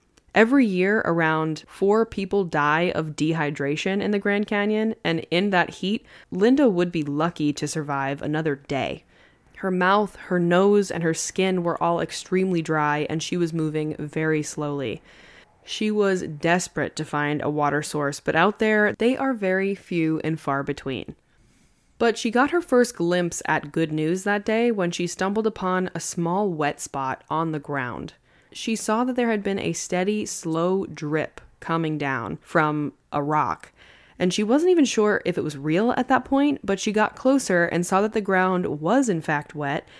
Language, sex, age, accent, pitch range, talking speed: English, female, 20-39, American, 155-205 Hz, 180 wpm